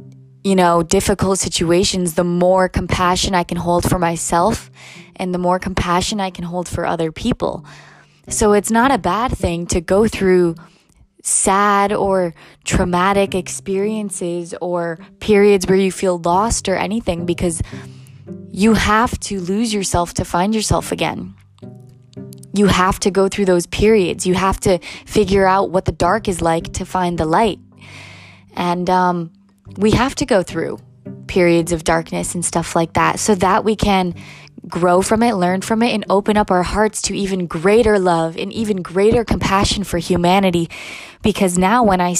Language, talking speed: English, 165 wpm